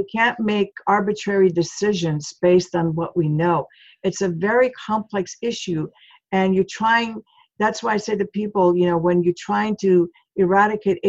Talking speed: 170 wpm